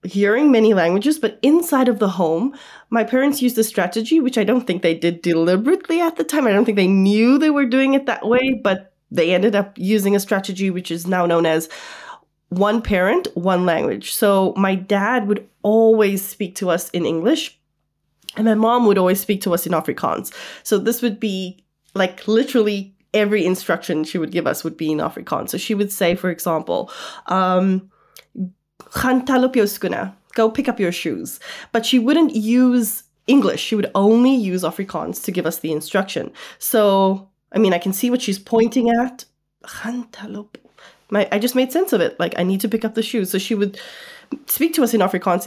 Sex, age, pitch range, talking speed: female, 20-39, 185-250 Hz, 190 wpm